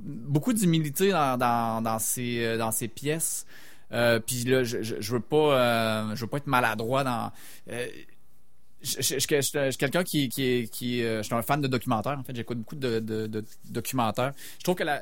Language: French